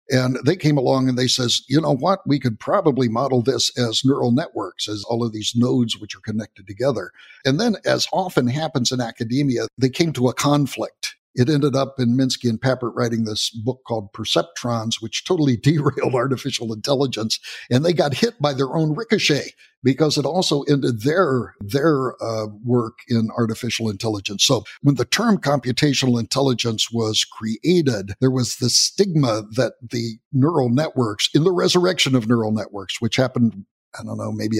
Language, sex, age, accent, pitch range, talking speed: English, male, 60-79, American, 115-140 Hz, 180 wpm